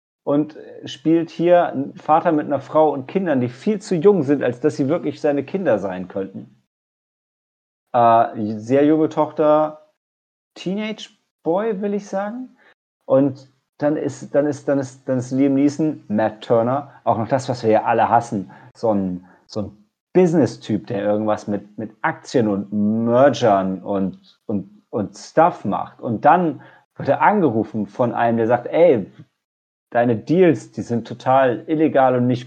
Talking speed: 155 wpm